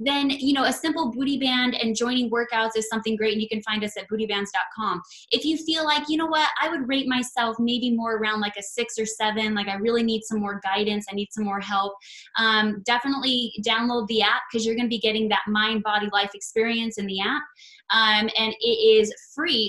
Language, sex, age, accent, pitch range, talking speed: English, female, 10-29, American, 210-250 Hz, 230 wpm